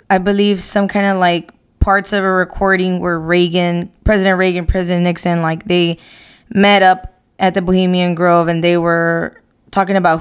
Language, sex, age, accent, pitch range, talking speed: English, female, 20-39, American, 175-195 Hz, 170 wpm